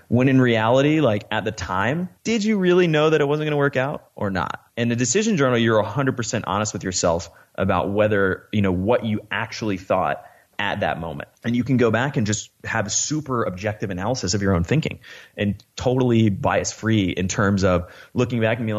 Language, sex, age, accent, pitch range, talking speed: English, male, 30-49, American, 95-115 Hz, 215 wpm